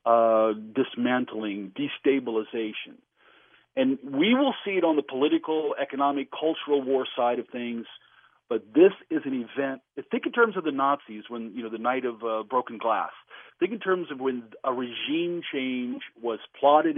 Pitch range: 115-180 Hz